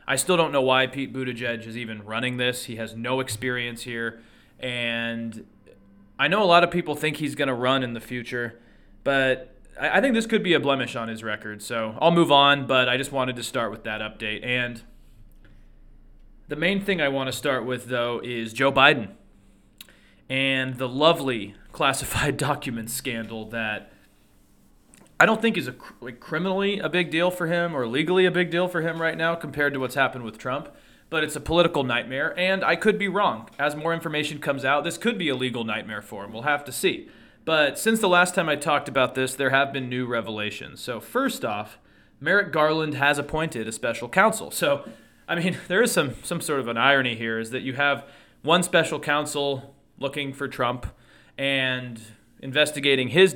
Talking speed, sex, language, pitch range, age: 200 wpm, male, English, 120-155 Hz, 30-49